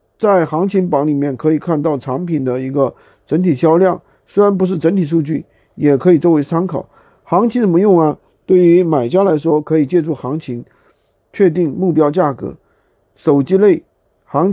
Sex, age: male, 50-69